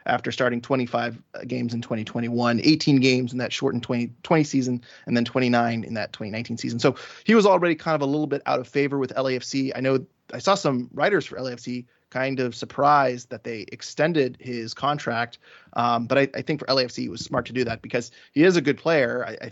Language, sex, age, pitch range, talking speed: English, male, 20-39, 120-145 Hz, 220 wpm